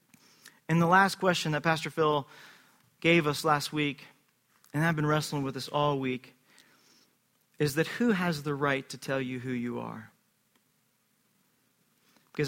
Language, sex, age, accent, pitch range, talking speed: English, male, 40-59, American, 140-165 Hz, 155 wpm